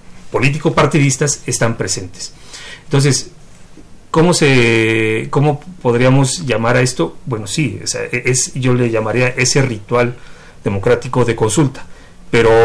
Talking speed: 120 wpm